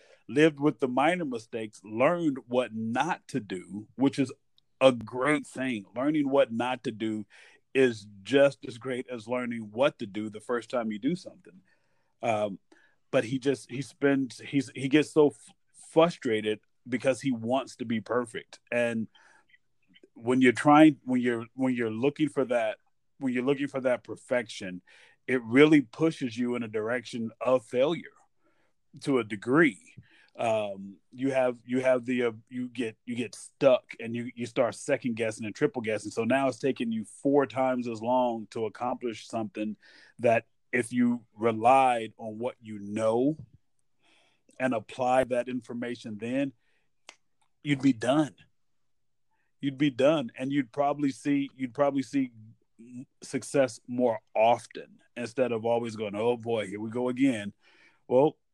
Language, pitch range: English, 115-135 Hz